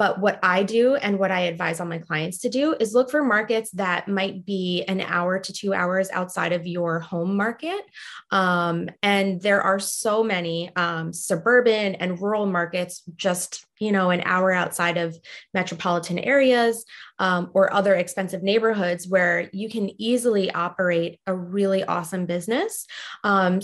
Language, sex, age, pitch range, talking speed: English, female, 20-39, 180-215 Hz, 165 wpm